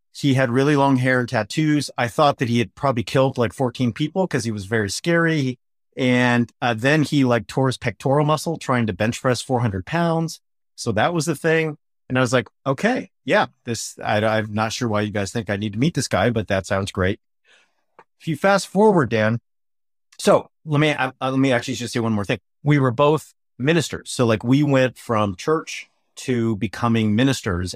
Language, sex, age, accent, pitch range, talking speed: English, male, 30-49, American, 105-135 Hz, 210 wpm